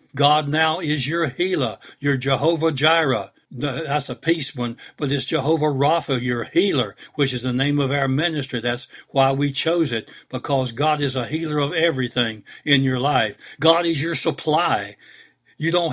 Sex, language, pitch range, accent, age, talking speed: male, English, 130-160 Hz, American, 60-79, 175 wpm